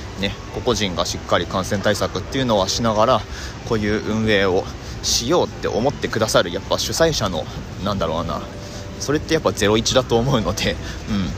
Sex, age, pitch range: male, 30-49, 95-115 Hz